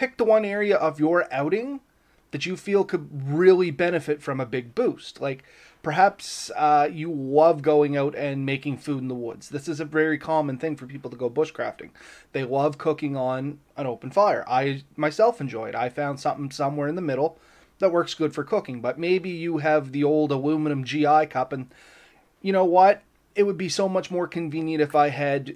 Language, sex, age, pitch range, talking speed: English, male, 30-49, 145-175 Hz, 205 wpm